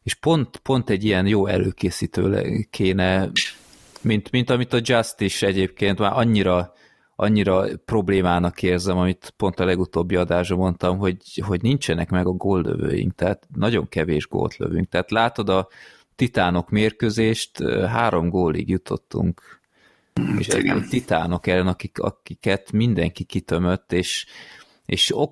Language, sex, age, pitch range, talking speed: English, male, 20-39, 90-105 Hz, 130 wpm